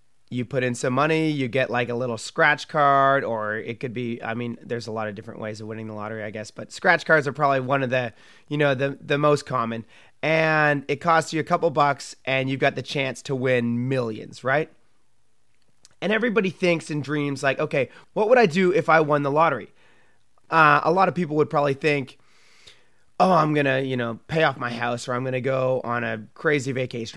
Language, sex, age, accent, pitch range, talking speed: English, male, 30-49, American, 130-165 Hz, 225 wpm